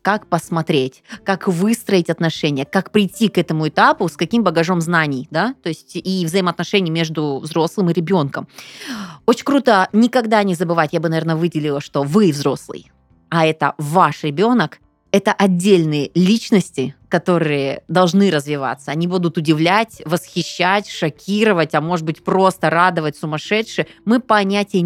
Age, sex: 20-39, female